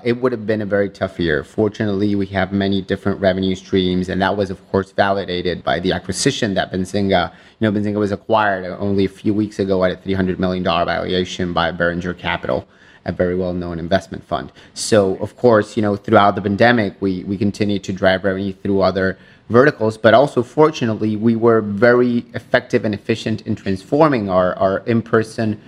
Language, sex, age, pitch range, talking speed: English, male, 30-49, 95-115 Hz, 190 wpm